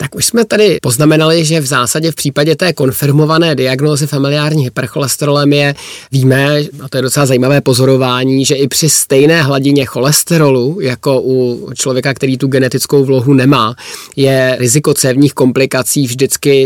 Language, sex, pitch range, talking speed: Czech, male, 130-145 Hz, 150 wpm